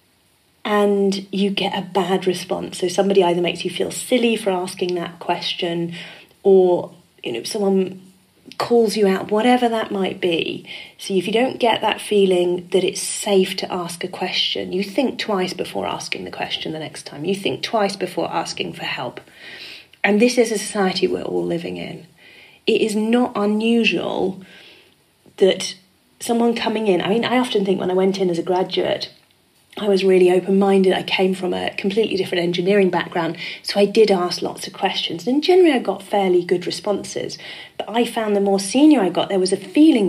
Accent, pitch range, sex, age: British, 185-225 Hz, female, 30-49